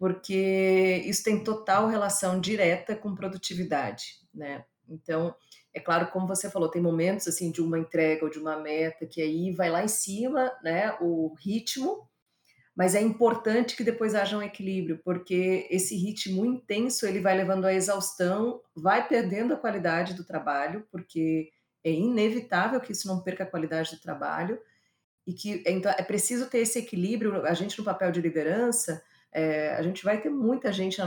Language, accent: Portuguese, Brazilian